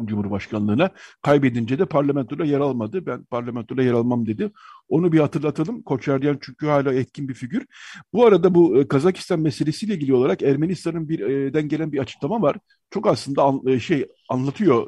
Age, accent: 50-69, native